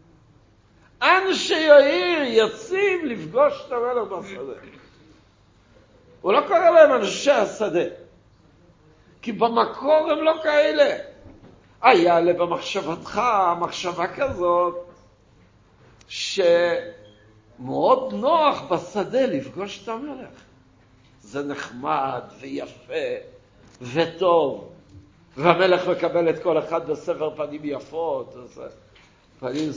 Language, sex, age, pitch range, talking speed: Hebrew, male, 60-79, 130-205 Hz, 85 wpm